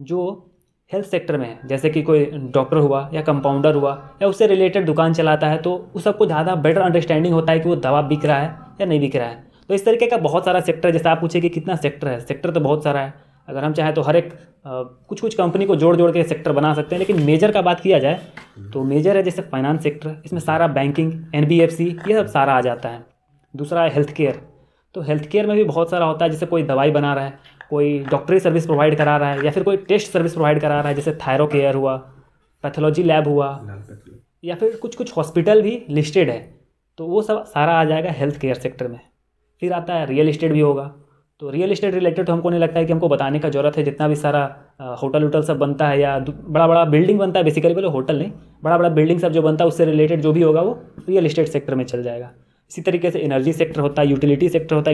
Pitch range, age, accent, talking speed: 145-170 Hz, 20-39, native, 245 wpm